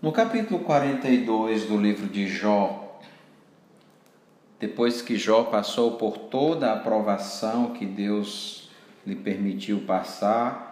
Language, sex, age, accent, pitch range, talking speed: Portuguese, male, 50-69, Brazilian, 100-125 Hz, 110 wpm